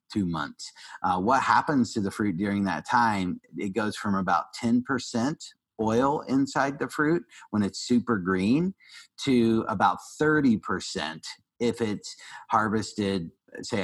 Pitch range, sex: 95-115 Hz, male